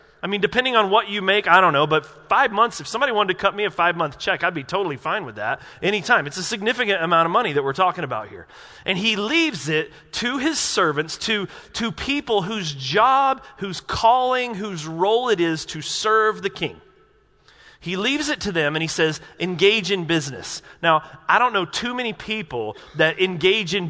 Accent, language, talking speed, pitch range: American, English, 210 wpm, 160-215 Hz